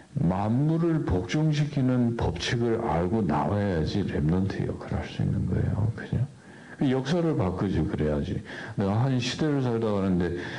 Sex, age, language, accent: male, 60-79, Korean, native